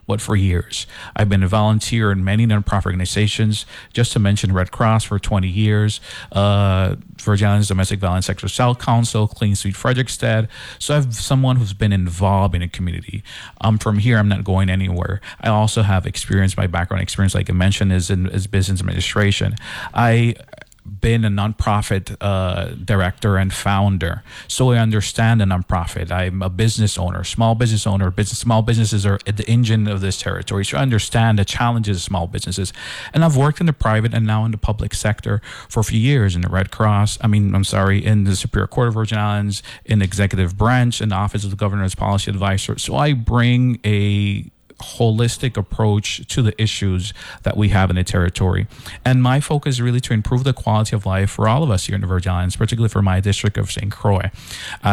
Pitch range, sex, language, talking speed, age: 95-115 Hz, male, English, 200 wpm, 40-59